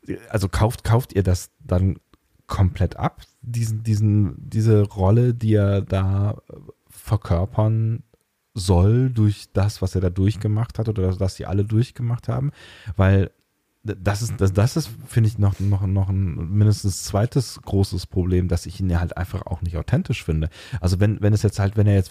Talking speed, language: 180 wpm, German